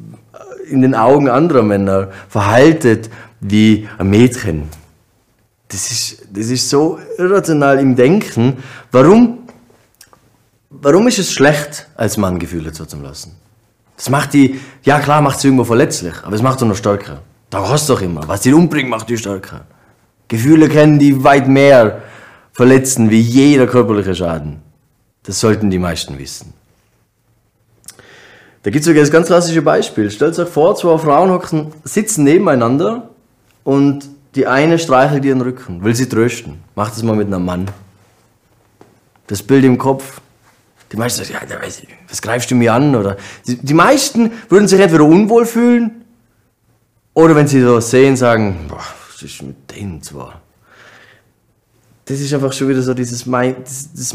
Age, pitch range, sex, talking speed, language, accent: 30-49, 105-140 Hz, male, 155 wpm, German, German